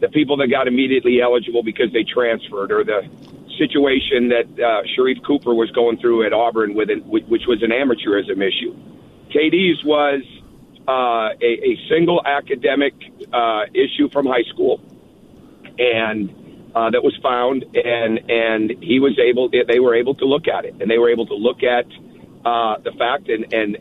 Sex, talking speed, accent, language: male, 175 wpm, American, English